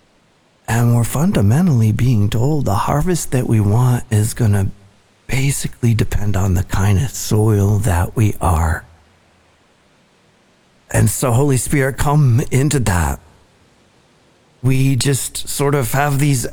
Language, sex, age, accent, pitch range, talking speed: English, male, 50-69, American, 110-140 Hz, 130 wpm